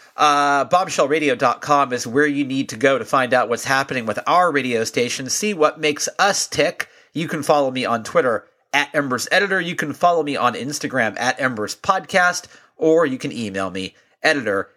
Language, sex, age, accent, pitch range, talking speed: English, male, 40-59, American, 130-170 Hz, 185 wpm